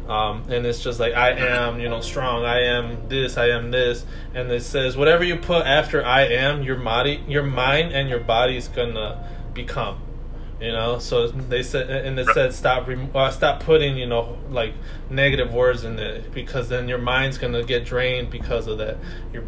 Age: 20-39